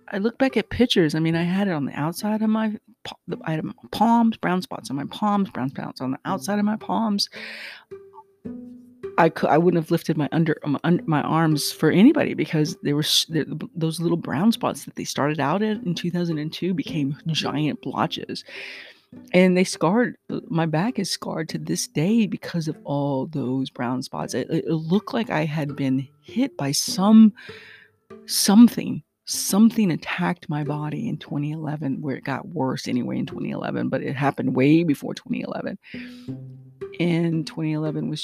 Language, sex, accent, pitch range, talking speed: English, female, American, 145-205 Hz, 175 wpm